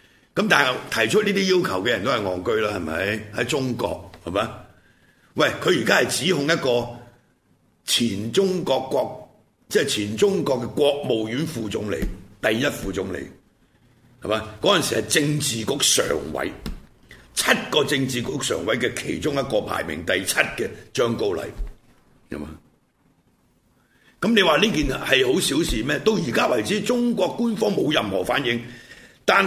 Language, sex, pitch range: Chinese, male, 120-190 Hz